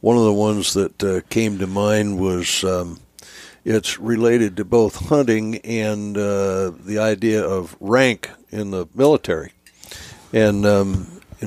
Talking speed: 145 wpm